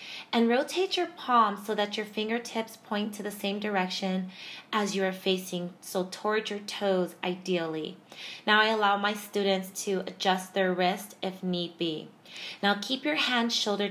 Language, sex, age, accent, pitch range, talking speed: English, female, 20-39, American, 195-250 Hz, 170 wpm